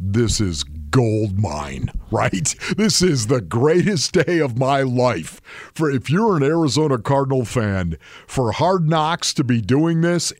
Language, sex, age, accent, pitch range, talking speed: English, male, 50-69, American, 115-150 Hz, 155 wpm